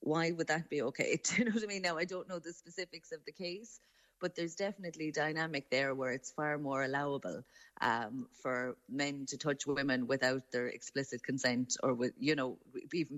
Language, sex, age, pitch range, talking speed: English, female, 30-49, 140-165 Hz, 205 wpm